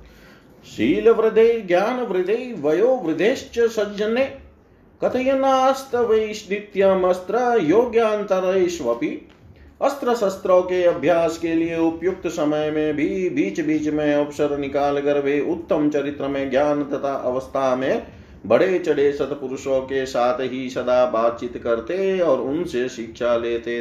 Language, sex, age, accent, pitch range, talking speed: Hindi, male, 40-59, native, 135-220 Hz, 65 wpm